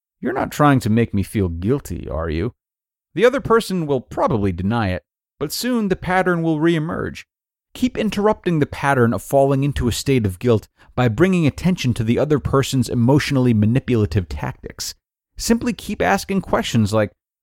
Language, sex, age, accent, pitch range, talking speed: English, male, 30-49, American, 100-145 Hz, 170 wpm